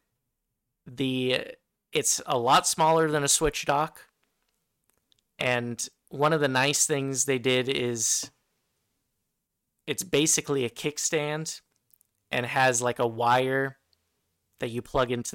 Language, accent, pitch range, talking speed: English, American, 115-135 Hz, 120 wpm